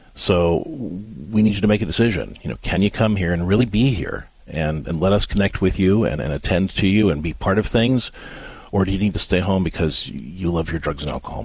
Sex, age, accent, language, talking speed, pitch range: male, 40-59, American, English, 255 wpm, 85-110 Hz